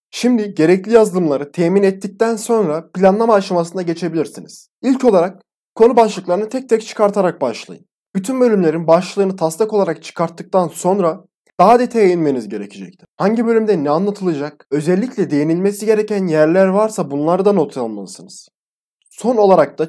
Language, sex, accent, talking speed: Turkish, male, native, 130 wpm